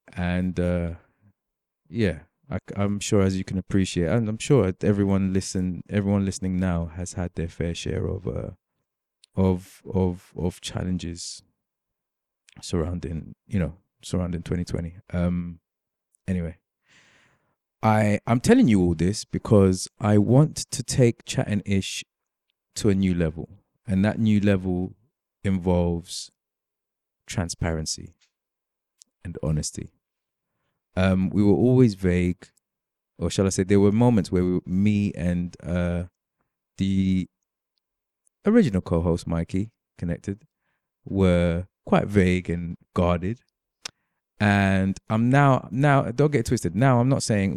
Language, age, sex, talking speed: English, 20-39, male, 125 wpm